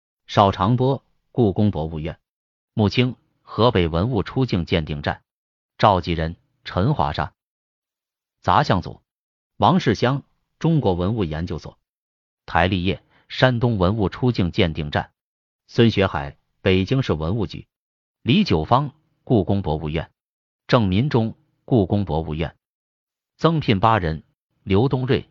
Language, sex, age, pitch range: Chinese, male, 30-49, 85-125 Hz